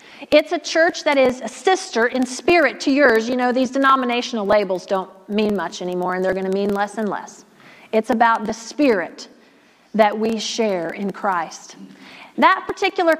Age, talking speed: 40-59, 175 wpm